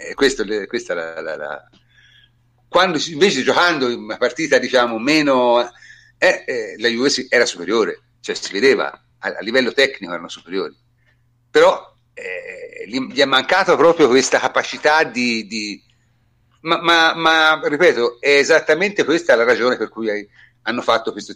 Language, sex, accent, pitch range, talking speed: Italian, male, native, 115-170 Hz, 140 wpm